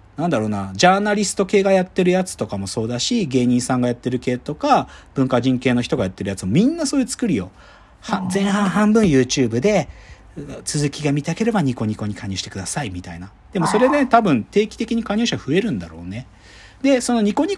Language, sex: Japanese, male